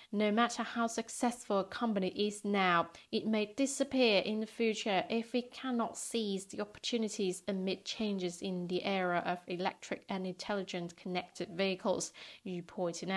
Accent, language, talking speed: British, English, 150 wpm